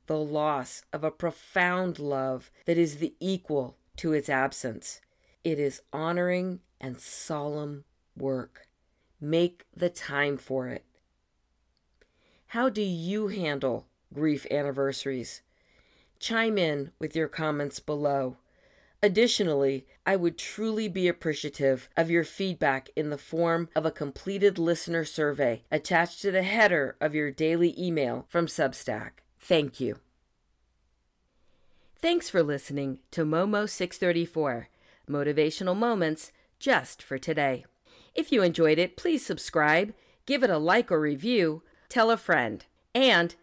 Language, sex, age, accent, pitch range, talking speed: English, female, 40-59, American, 145-185 Hz, 125 wpm